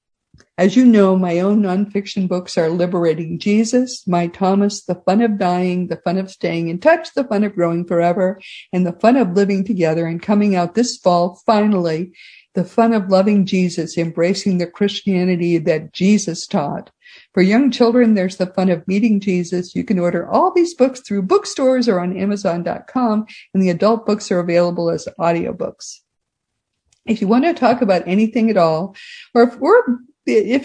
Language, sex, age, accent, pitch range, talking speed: English, female, 50-69, American, 180-230 Hz, 180 wpm